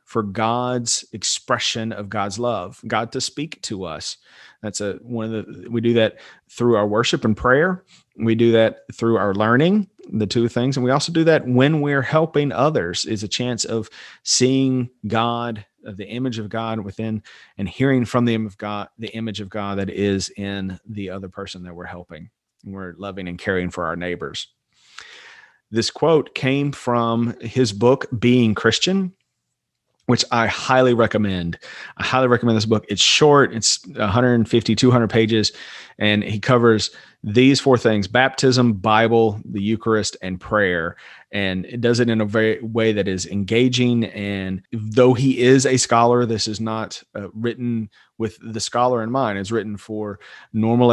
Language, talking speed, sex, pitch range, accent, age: English, 165 wpm, male, 105-125 Hz, American, 40-59